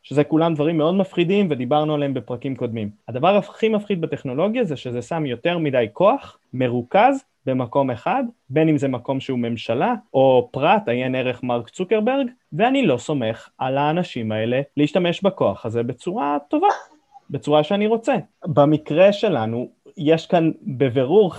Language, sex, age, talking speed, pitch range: Hebrew, male, 20-39, 150 wpm, 130-185 Hz